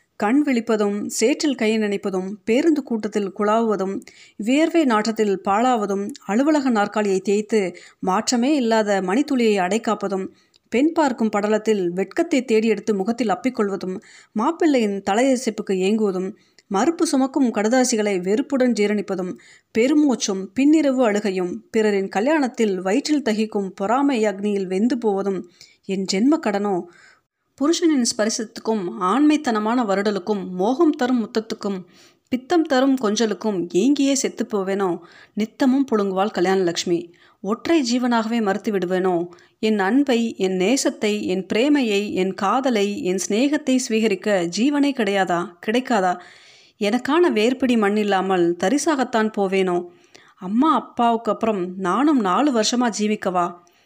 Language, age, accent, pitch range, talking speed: Tamil, 30-49, native, 195-255 Hz, 105 wpm